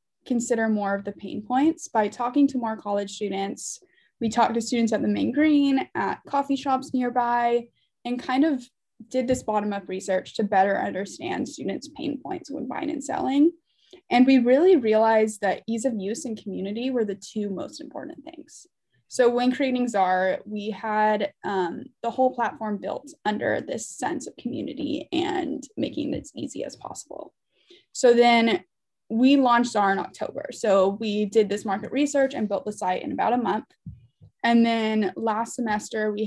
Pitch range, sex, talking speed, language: 210-275 Hz, female, 175 wpm, English